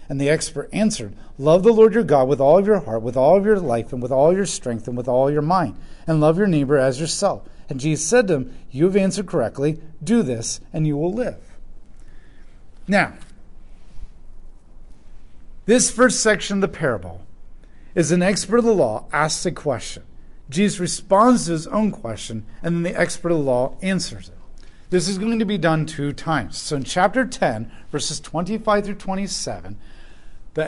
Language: English